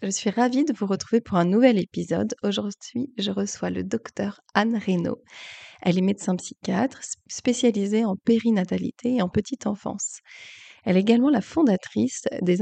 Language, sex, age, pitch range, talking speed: French, female, 30-49, 185-230 Hz, 160 wpm